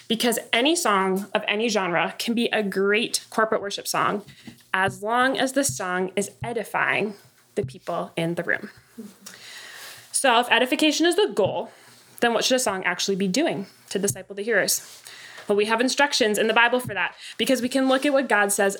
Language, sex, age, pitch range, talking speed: English, female, 20-39, 195-240 Hz, 190 wpm